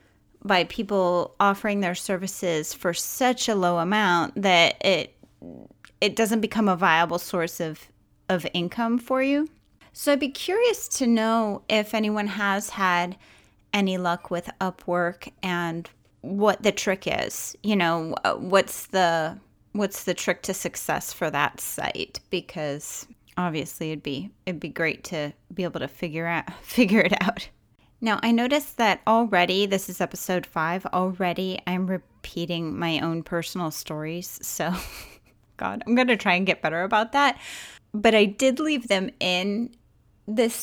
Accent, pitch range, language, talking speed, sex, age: American, 170-210 Hz, English, 155 wpm, female, 30-49